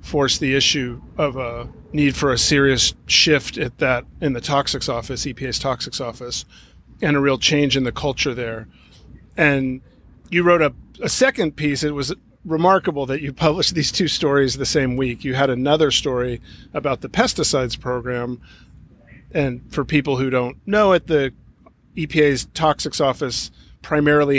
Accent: American